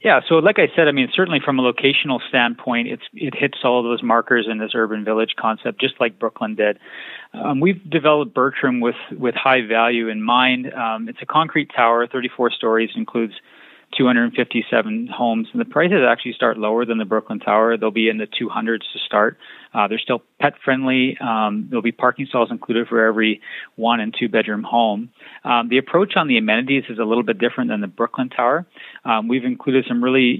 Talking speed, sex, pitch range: 195 wpm, male, 115-135 Hz